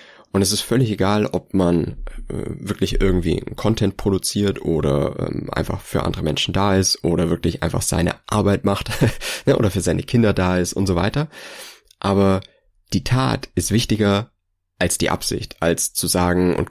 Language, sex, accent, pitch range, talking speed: German, male, German, 90-105 Hz, 170 wpm